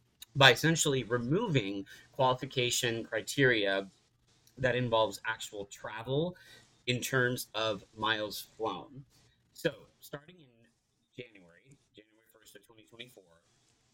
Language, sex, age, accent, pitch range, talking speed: English, male, 30-49, American, 105-130 Hz, 95 wpm